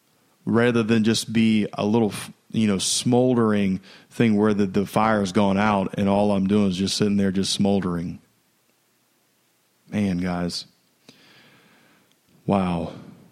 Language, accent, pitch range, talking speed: English, American, 100-115 Hz, 130 wpm